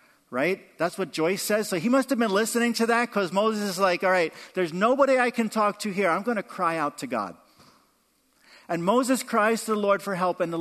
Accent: American